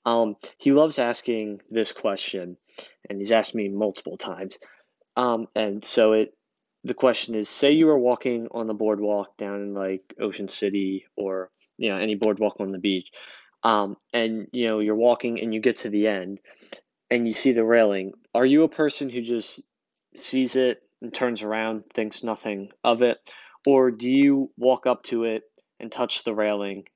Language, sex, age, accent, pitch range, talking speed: English, male, 20-39, American, 100-120 Hz, 185 wpm